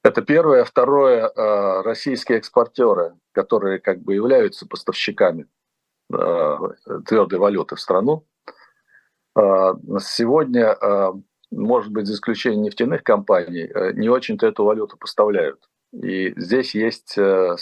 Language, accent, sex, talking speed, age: Russian, native, male, 100 wpm, 50-69